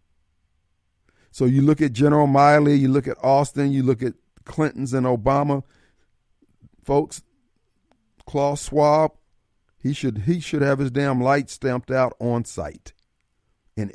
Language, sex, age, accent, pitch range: Japanese, male, 50-69, American, 105-140 Hz